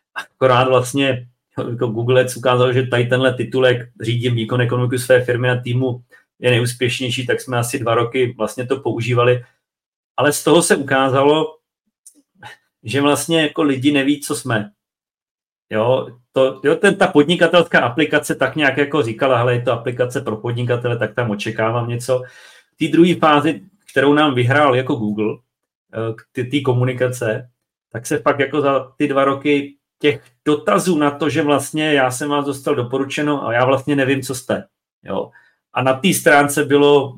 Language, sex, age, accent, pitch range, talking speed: Czech, male, 40-59, native, 120-145 Hz, 165 wpm